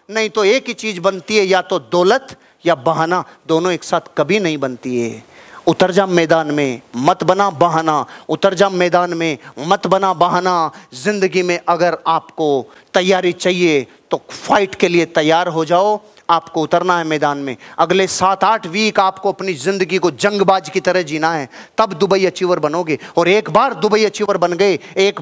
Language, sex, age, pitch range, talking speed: Hindi, male, 30-49, 170-210 Hz, 180 wpm